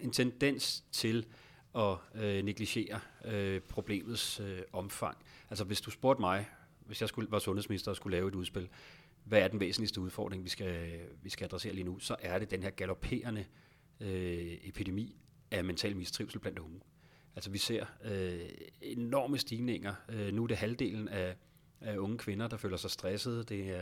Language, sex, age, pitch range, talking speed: Danish, male, 40-59, 95-110 Hz, 175 wpm